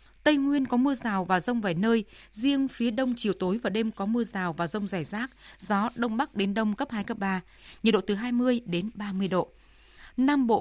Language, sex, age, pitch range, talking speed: Vietnamese, female, 20-39, 190-240 Hz, 230 wpm